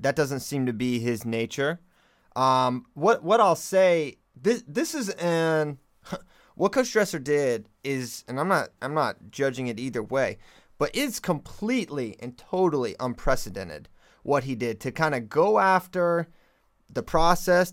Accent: American